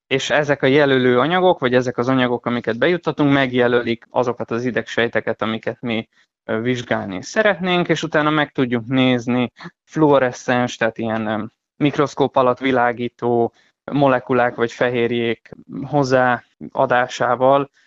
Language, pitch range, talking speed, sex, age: Hungarian, 115-135 Hz, 115 wpm, male, 20-39